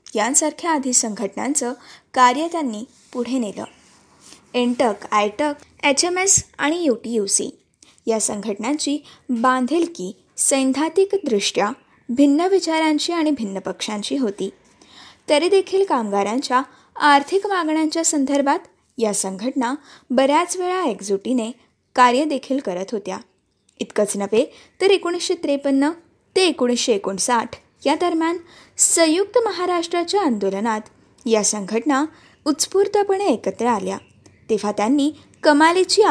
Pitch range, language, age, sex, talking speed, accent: 225-330 Hz, Marathi, 20-39, female, 95 wpm, native